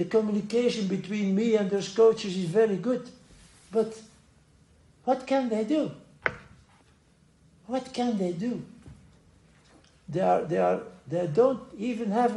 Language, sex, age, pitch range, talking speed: English, male, 60-79, 170-235 Hz, 120 wpm